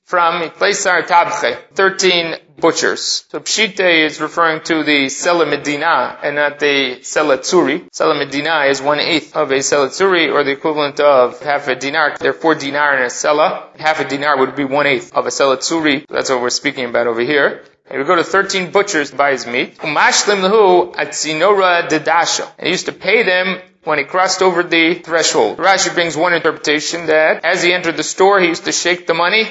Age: 30-49